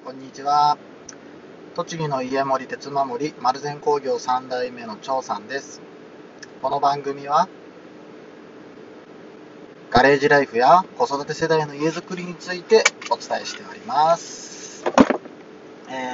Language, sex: Japanese, male